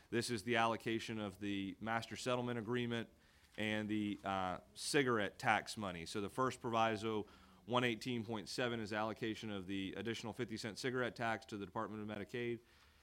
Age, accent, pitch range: 30-49, American, 95-115 Hz